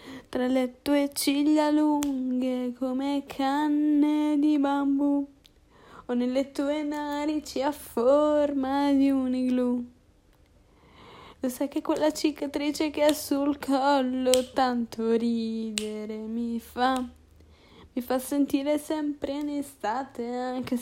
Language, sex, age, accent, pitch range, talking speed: Italian, female, 20-39, native, 255-295 Hz, 110 wpm